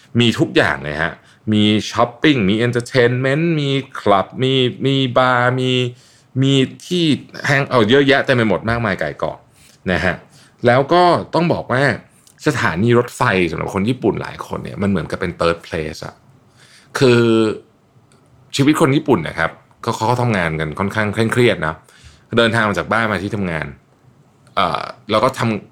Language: Thai